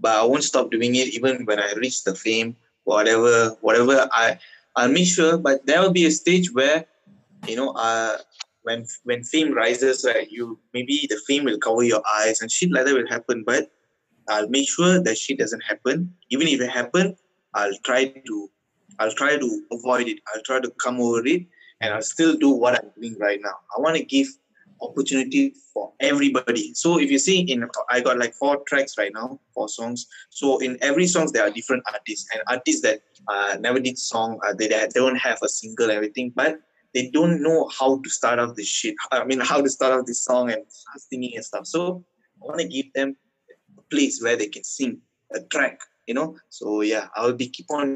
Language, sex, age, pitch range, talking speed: English, male, 20-39, 115-160 Hz, 215 wpm